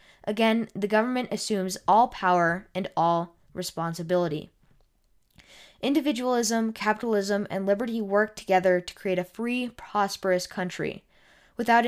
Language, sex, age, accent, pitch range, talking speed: English, female, 10-29, American, 185-225 Hz, 110 wpm